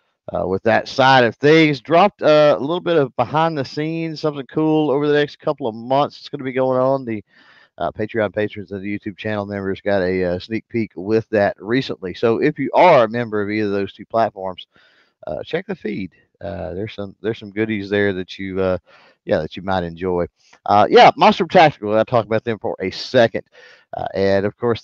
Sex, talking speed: male, 220 wpm